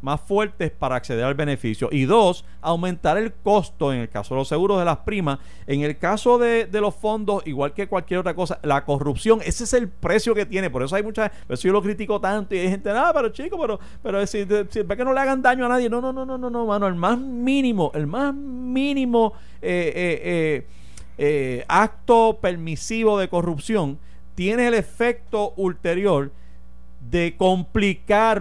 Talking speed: 205 wpm